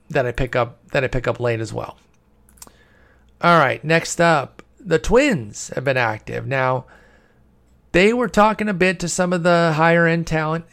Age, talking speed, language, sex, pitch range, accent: 40-59, 185 wpm, English, male, 130-165 Hz, American